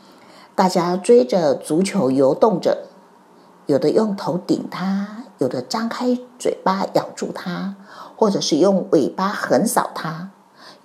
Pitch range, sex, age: 165-220 Hz, female, 50-69